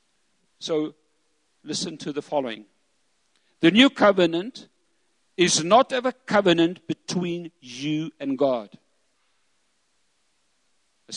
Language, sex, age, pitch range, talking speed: English, male, 50-69, 155-210 Hz, 95 wpm